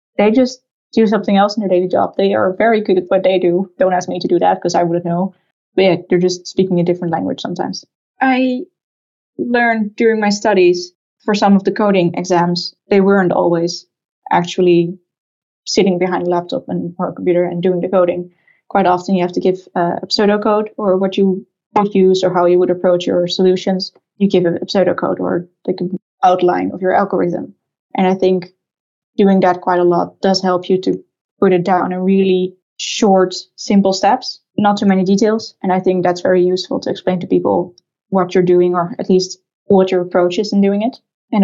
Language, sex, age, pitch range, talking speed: English, female, 10-29, 180-200 Hz, 205 wpm